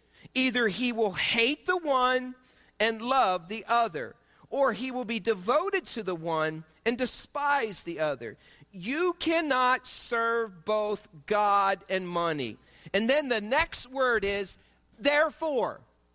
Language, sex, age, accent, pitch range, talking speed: English, male, 40-59, American, 180-260 Hz, 135 wpm